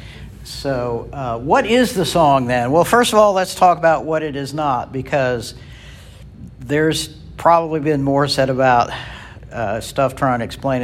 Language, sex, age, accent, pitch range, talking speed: English, male, 60-79, American, 110-140 Hz, 165 wpm